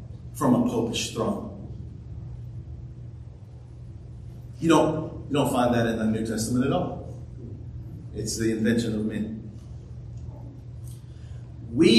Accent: American